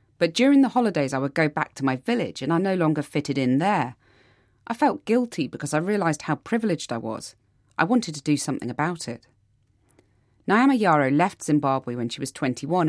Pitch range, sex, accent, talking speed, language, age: 125-175 Hz, female, British, 200 wpm, English, 30-49